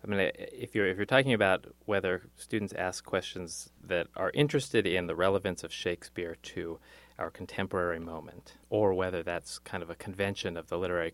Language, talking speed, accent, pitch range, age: English, 185 wpm, American, 85-115 Hz, 30-49